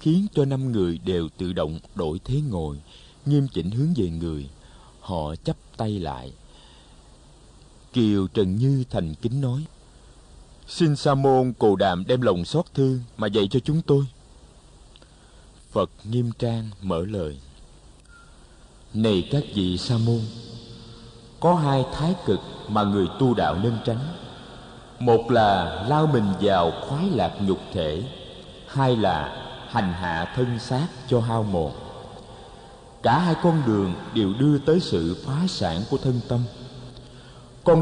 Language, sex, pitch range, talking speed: Vietnamese, male, 110-150 Hz, 145 wpm